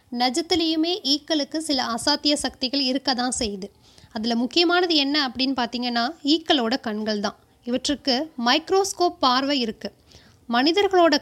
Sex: female